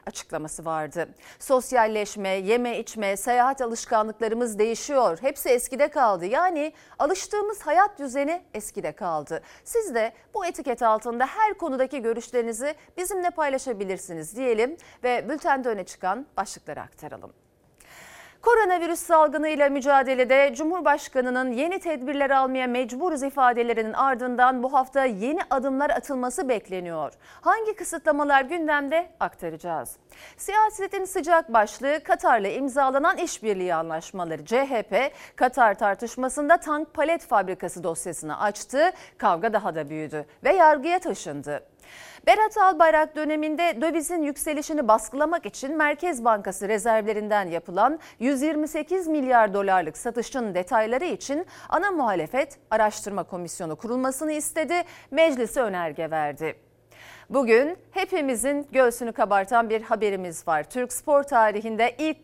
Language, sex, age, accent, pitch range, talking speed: Turkish, female, 40-59, native, 215-310 Hz, 110 wpm